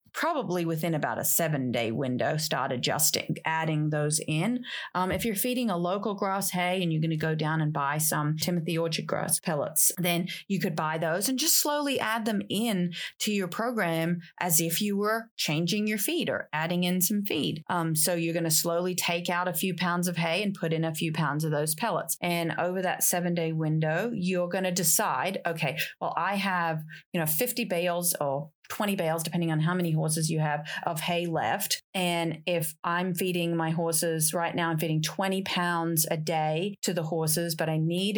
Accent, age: American, 30-49